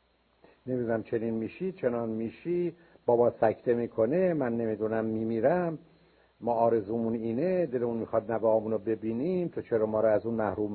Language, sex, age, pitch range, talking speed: Persian, male, 60-79, 115-165 Hz, 145 wpm